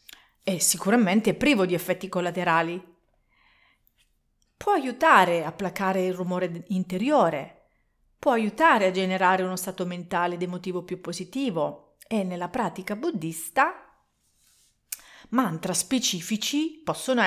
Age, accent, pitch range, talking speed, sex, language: 40-59, native, 175-225 Hz, 110 wpm, female, Italian